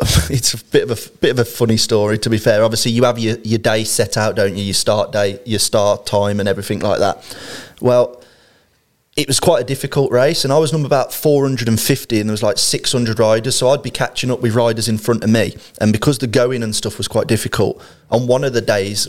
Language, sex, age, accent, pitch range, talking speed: English, male, 20-39, British, 105-125 Hz, 240 wpm